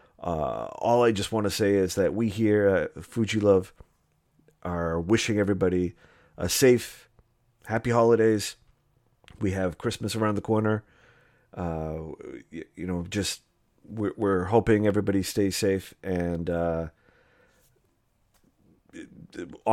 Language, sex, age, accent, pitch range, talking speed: English, male, 40-59, American, 100-125 Hz, 120 wpm